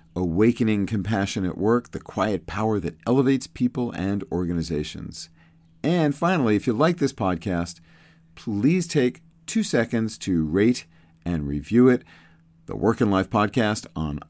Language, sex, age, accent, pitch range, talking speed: English, male, 50-69, American, 85-115 Hz, 145 wpm